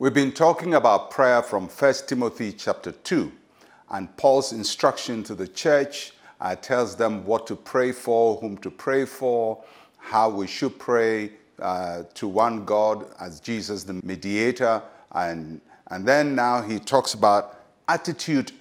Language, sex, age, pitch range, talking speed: English, male, 50-69, 105-135 Hz, 150 wpm